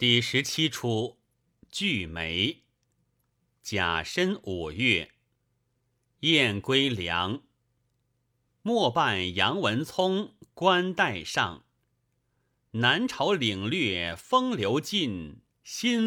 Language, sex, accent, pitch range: Chinese, male, native, 115-160 Hz